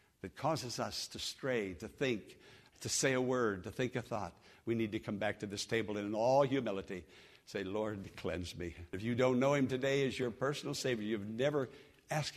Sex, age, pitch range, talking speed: male, 60-79, 100-130 Hz, 210 wpm